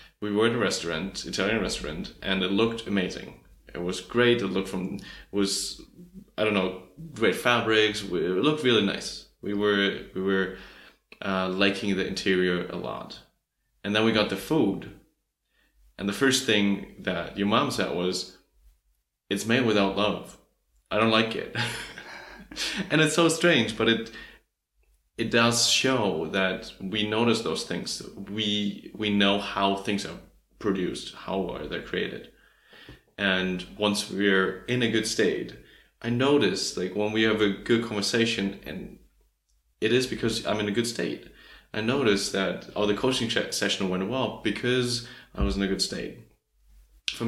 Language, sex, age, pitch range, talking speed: English, male, 30-49, 95-115 Hz, 165 wpm